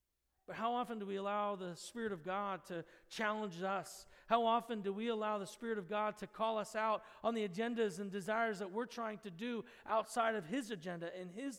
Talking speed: 215 wpm